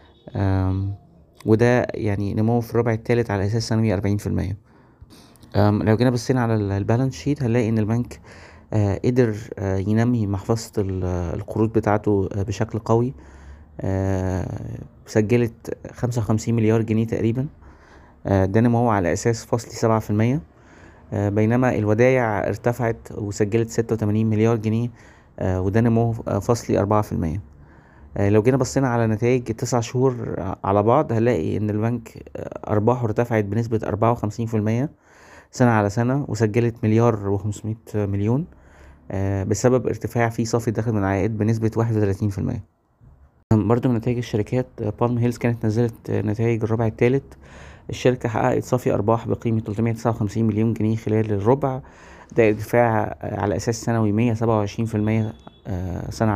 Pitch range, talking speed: 100-120 Hz, 140 wpm